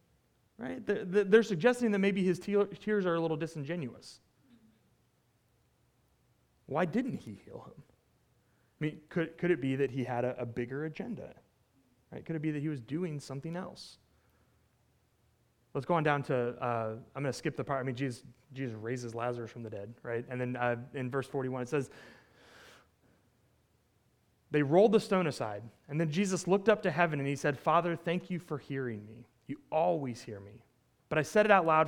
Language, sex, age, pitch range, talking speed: English, male, 30-49, 120-165 Hz, 190 wpm